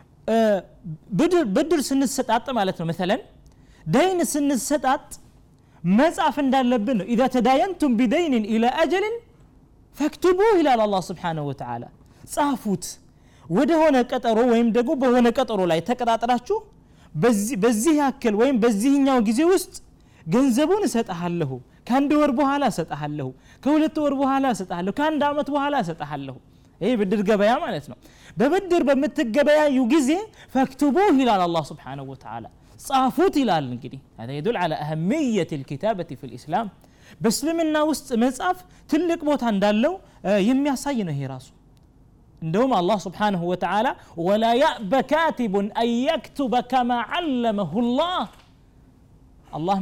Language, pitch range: Amharic, 190-290 Hz